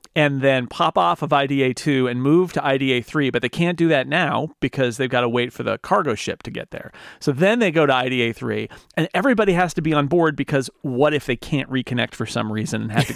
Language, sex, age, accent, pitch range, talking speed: English, male, 40-59, American, 125-155 Hz, 235 wpm